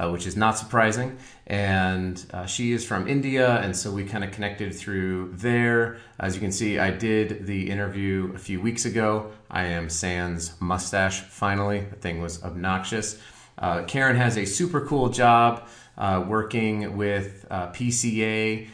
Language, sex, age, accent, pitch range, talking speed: English, male, 30-49, American, 95-115 Hz, 165 wpm